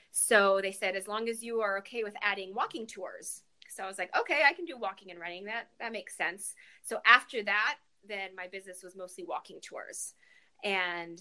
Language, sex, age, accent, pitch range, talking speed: English, female, 20-39, American, 180-215 Hz, 210 wpm